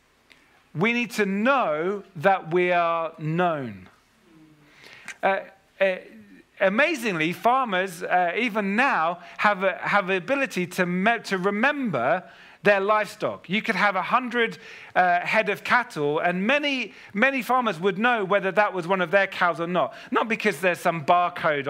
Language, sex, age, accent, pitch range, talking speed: English, male, 40-59, British, 155-230 Hz, 150 wpm